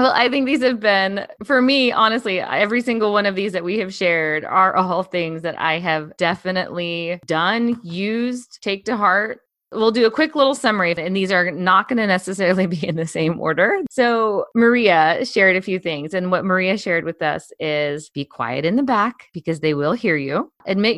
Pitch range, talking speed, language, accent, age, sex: 160-215 Hz, 205 wpm, English, American, 20-39, female